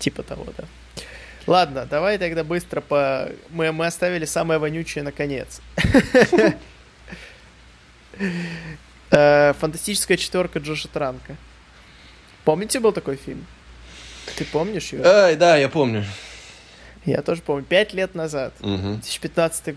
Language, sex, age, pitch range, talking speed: Russian, male, 20-39, 135-160 Hz, 105 wpm